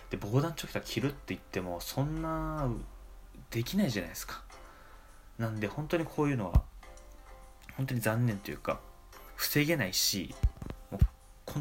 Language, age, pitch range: Japanese, 20-39, 90-130 Hz